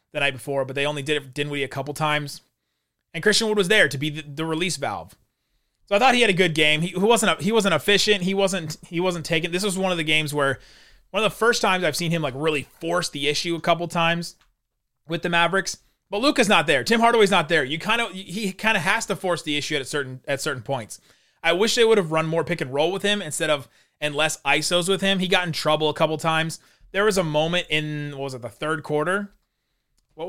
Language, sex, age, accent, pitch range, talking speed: English, male, 30-49, American, 145-185 Hz, 265 wpm